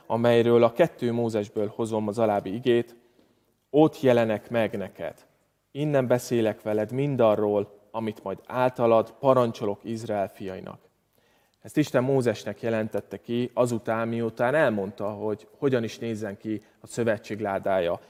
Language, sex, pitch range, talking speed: Hungarian, male, 105-125 Hz, 125 wpm